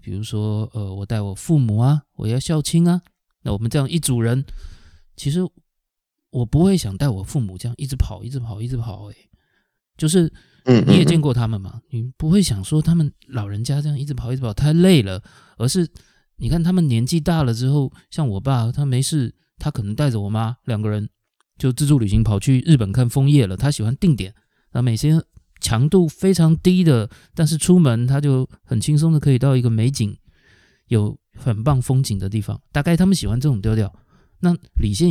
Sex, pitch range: male, 110-145 Hz